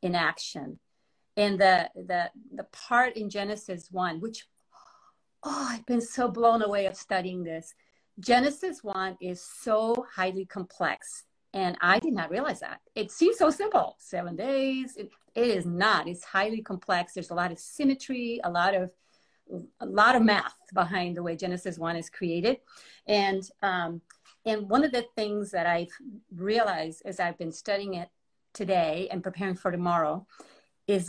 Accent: American